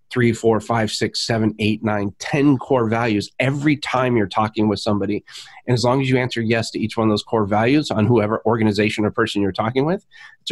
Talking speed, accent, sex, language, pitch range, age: 230 wpm, American, male, English, 110-135 Hz, 30-49